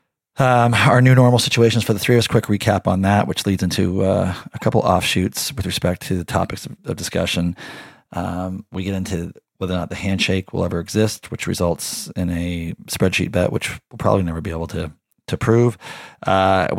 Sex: male